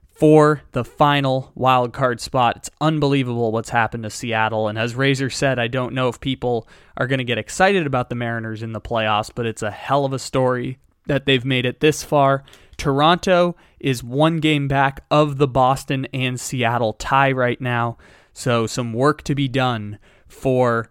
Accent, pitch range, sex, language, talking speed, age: American, 115-140 Hz, male, English, 185 wpm, 20-39